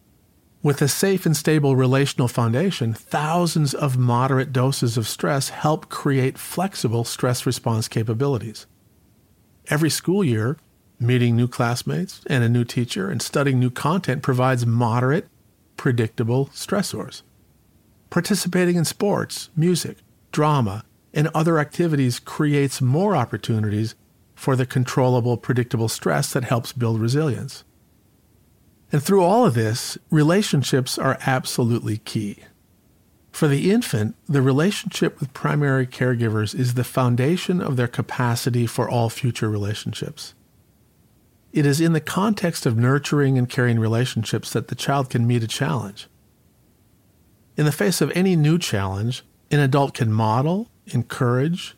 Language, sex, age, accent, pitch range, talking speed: English, male, 50-69, American, 115-150 Hz, 130 wpm